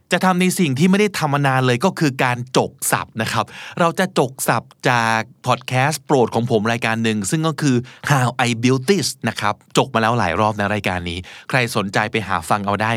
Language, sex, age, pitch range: Thai, male, 20-39, 110-160 Hz